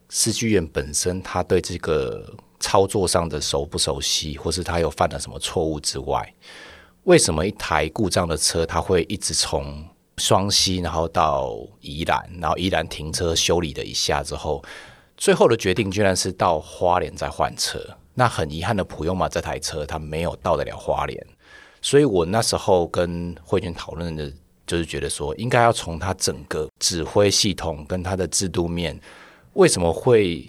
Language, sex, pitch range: Chinese, male, 80-100 Hz